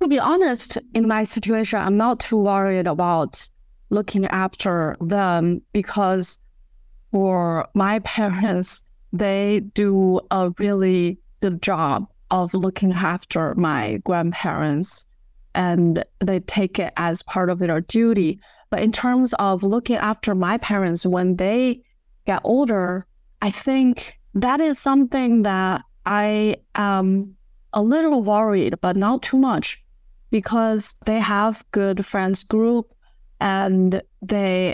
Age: 30-49